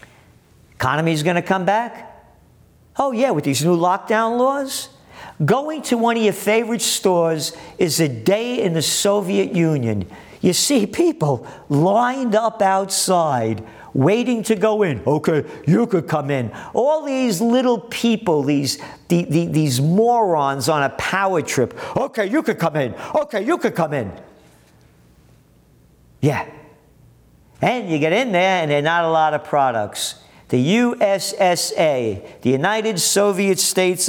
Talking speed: 150 wpm